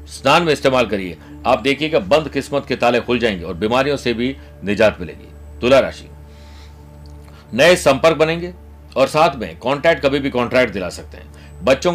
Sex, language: male, Hindi